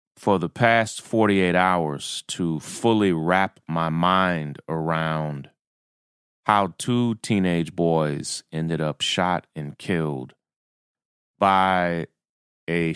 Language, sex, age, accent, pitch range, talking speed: English, male, 30-49, American, 80-95 Hz, 100 wpm